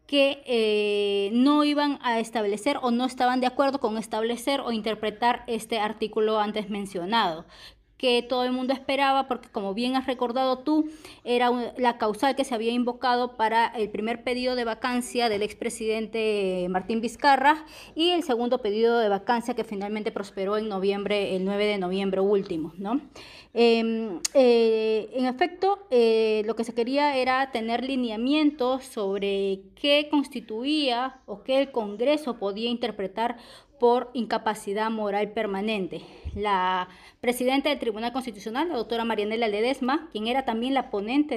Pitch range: 215-265 Hz